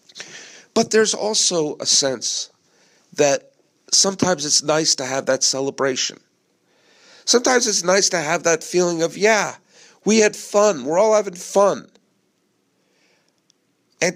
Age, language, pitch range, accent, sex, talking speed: 50-69, English, 155-225 Hz, American, male, 125 wpm